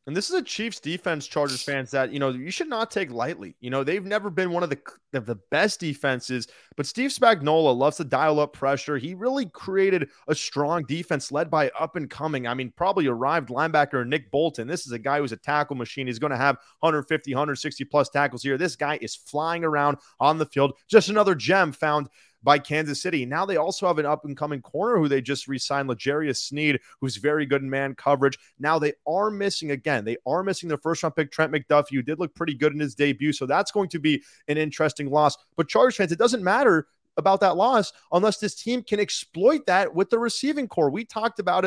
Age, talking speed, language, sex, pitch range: 30-49, 220 wpm, English, male, 140-180 Hz